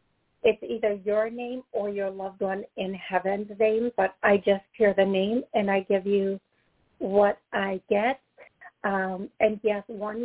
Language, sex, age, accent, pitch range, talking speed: English, female, 50-69, American, 200-235 Hz, 165 wpm